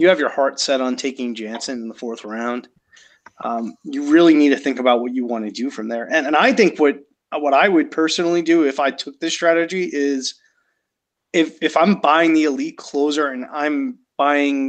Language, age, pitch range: English, 30-49, 125-165 Hz